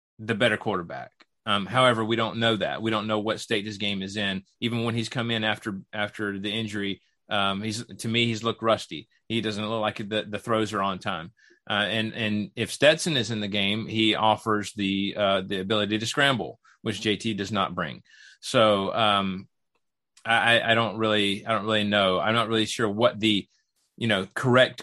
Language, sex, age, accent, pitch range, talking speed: English, male, 30-49, American, 100-115 Hz, 205 wpm